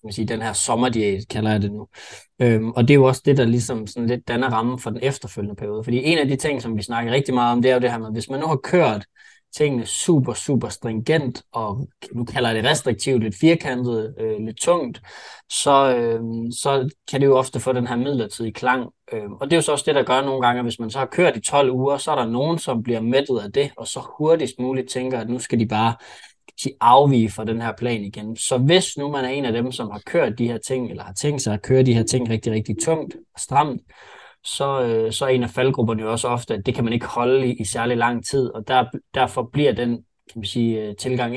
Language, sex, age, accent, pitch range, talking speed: Danish, male, 20-39, native, 115-135 Hz, 255 wpm